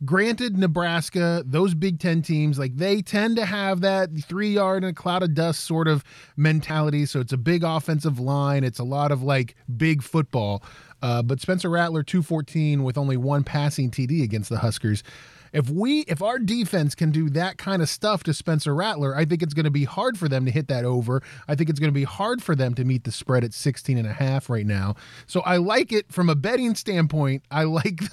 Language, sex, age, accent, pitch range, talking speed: English, male, 20-39, American, 130-180 Hz, 220 wpm